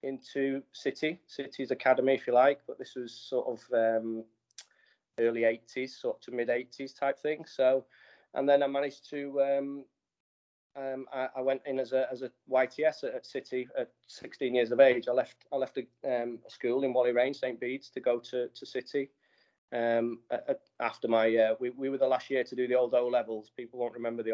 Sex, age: male, 30-49